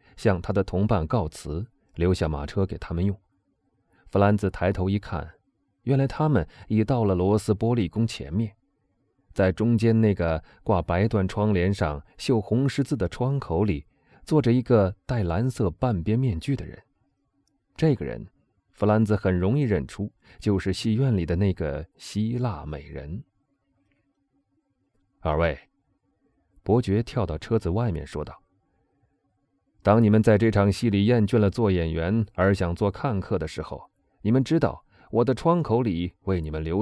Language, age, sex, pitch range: Chinese, 30-49, male, 90-120 Hz